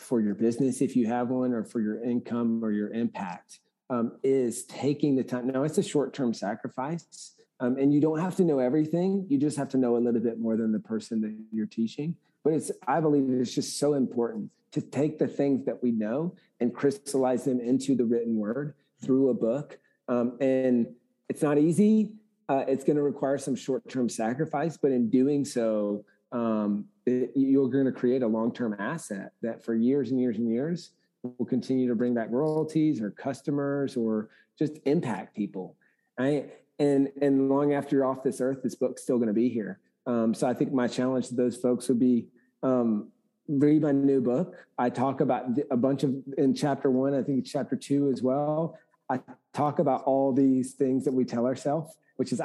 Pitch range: 120-140 Hz